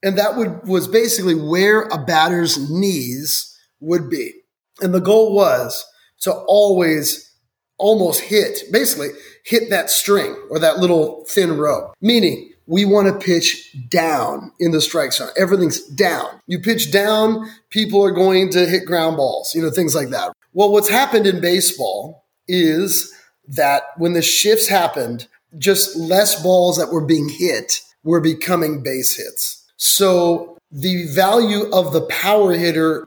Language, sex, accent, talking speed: English, male, American, 150 wpm